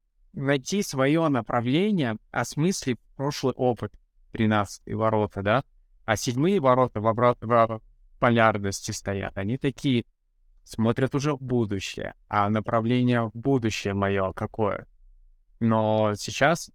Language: Russian